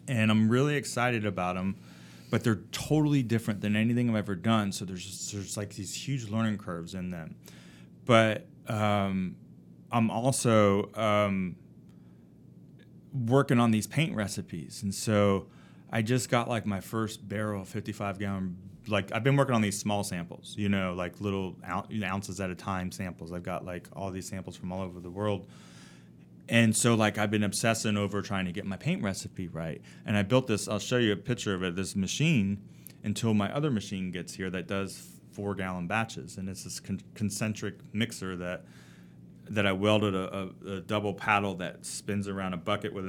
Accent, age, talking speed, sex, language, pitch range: American, 30-49, 180 wpm, male, English, 95-110 Hz